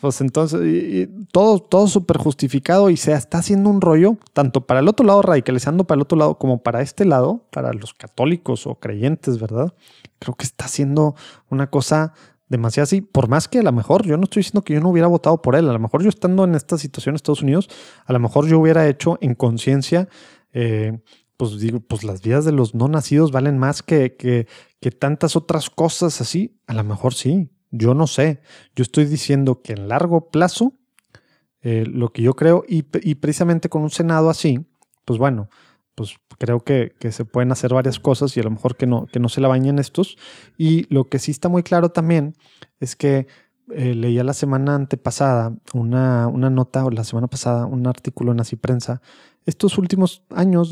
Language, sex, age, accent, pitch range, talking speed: Spanish, male, 30-49, Mexican, 125-170 Hz, 210 wpm